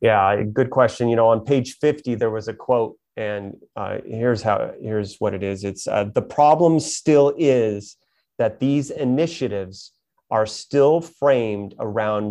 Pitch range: 110-140 Hz